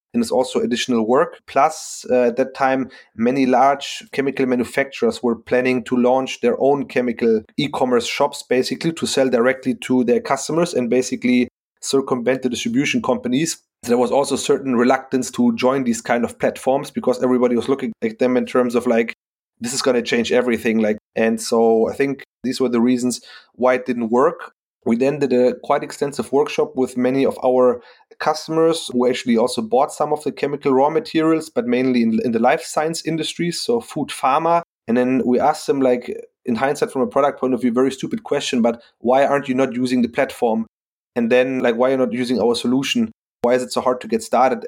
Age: 30-49